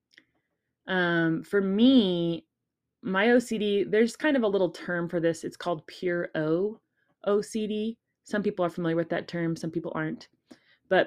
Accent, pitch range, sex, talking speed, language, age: American, 165-210 Hz, female, 155 wpm, English, 20-39